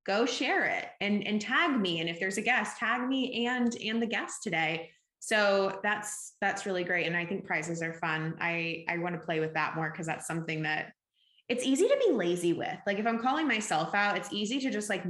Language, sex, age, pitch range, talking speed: English, female, 20-39, 170-215 Hz, 235 wpm